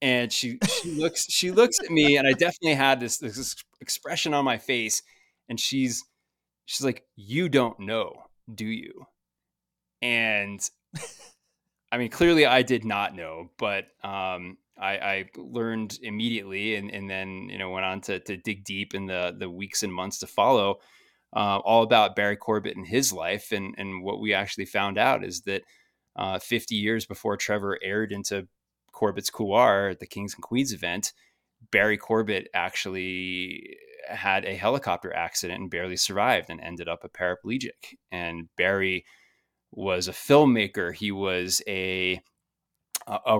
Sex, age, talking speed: male, 20-39, 160 wpm